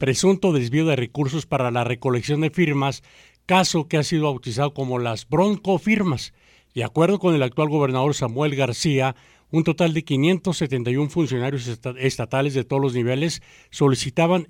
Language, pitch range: English, 130-160 Hz